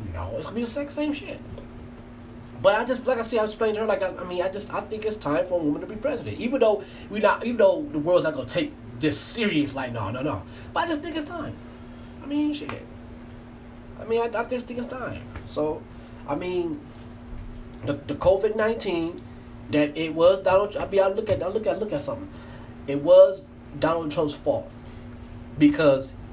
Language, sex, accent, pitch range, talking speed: English, male, American, 120-165 Hz, 220 wpm